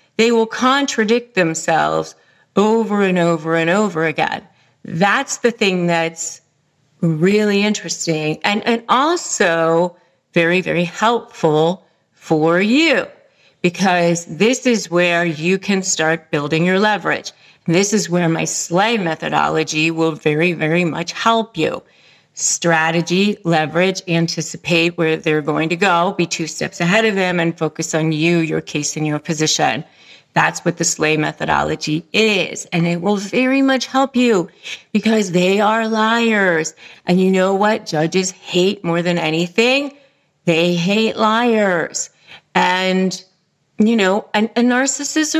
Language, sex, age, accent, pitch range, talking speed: English, female, 40-59, American, 165-225 Hz, 135 wpm